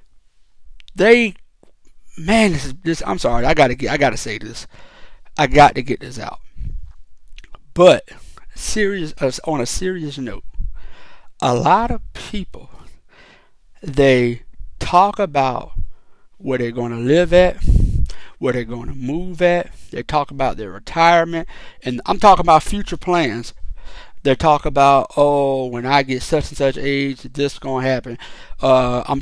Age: 60-79